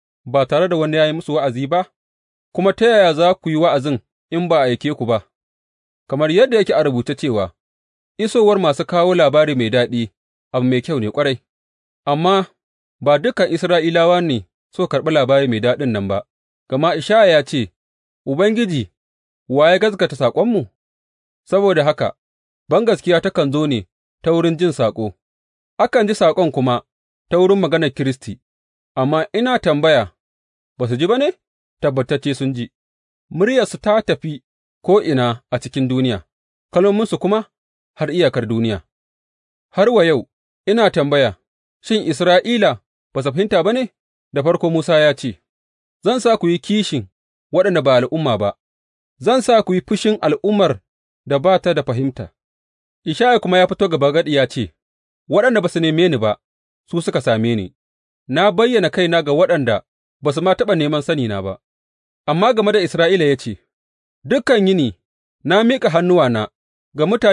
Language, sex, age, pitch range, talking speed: English, male, 30-49, 110-180 Hz, 120 wpm